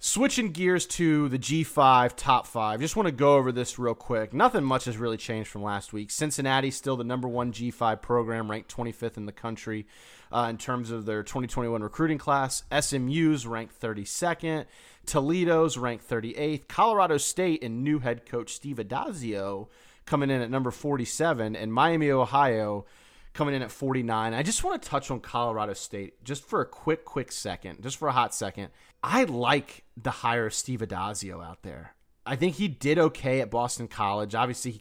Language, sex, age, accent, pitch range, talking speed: English, male, 30-49, American, 110-140 Hz, 185 wpm